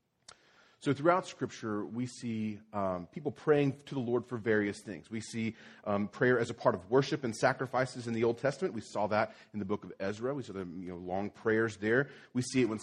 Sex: male